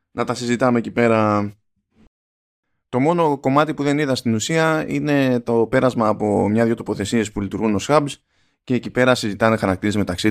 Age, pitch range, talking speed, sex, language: 20-39, 105-130 Hz, 170 wpm, male, Greek